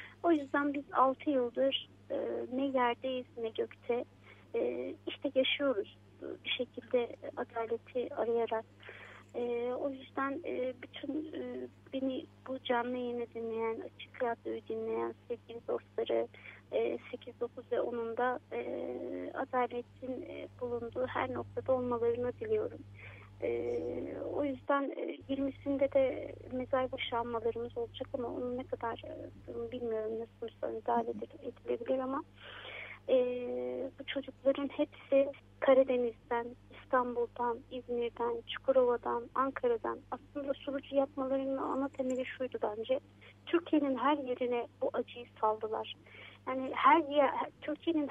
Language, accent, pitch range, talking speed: Turkish, native, 235-275 Hz, 110 wpm